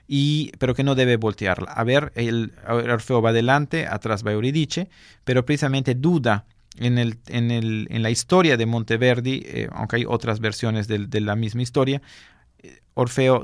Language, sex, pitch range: Spanish, male, 110-130 Hz